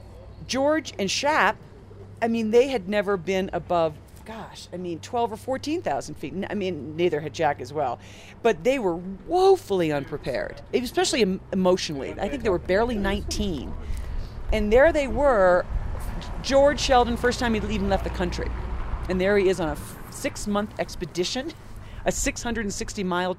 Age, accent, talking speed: 40-59, American, 155 wpm